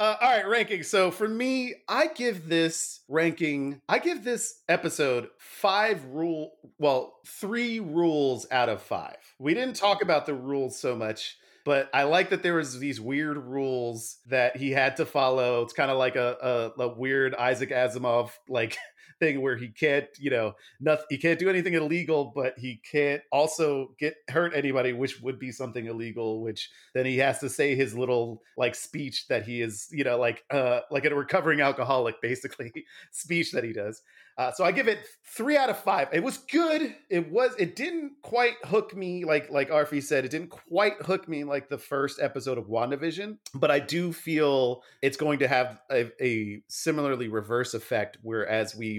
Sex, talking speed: male, 185 wpm